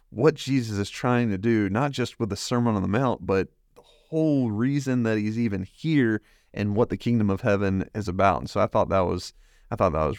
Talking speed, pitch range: 235 wpm, 95-120 Hz